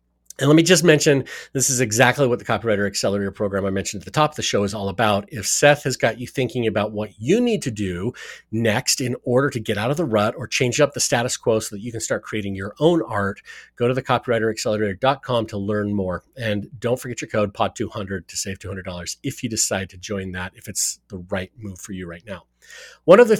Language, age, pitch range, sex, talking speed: English, 40-59, 100-130 Hz, male, 240 wpm